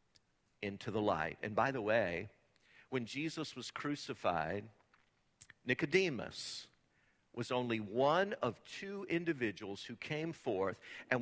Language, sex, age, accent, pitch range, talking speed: English, male, 50-69, American, 120-165 Hz, 120 wpm